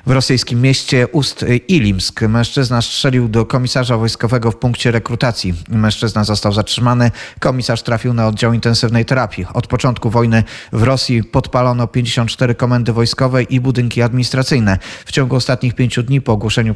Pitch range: 105-125 Hz